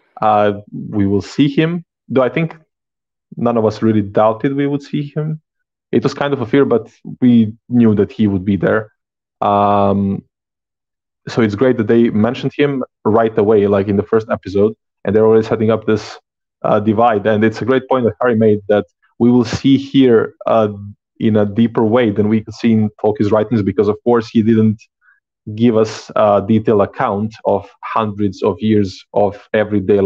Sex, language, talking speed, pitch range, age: male, English, 190 wpm, 105-120 Hz, 20-39